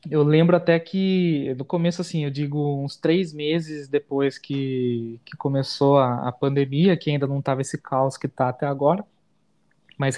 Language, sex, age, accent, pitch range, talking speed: Portuguese, male, 20-39, Brazilian, 140-170 Hz, 175 wpm